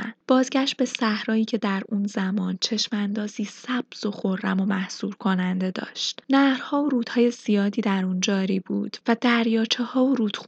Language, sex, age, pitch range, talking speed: Persian, female, 10-29, 195-235 Hz, 150 wpm